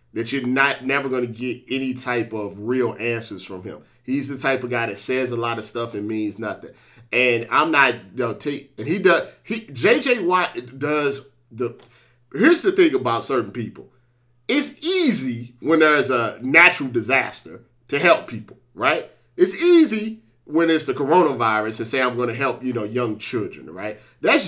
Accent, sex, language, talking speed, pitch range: American, male, English, 185 wpm, 120-200 Hz